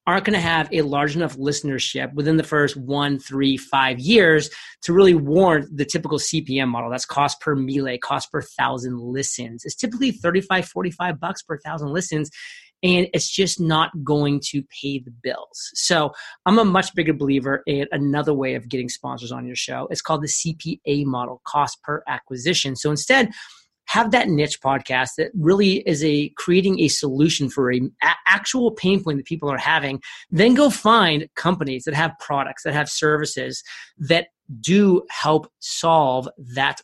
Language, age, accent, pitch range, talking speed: English, 30-49, American, 140-170 Hz, 175 wpm